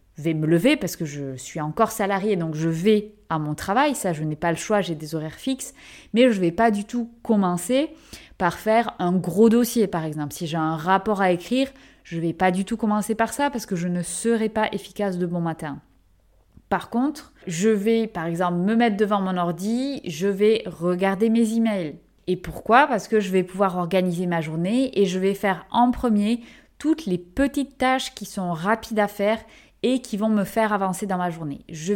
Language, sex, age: French, female, 20-39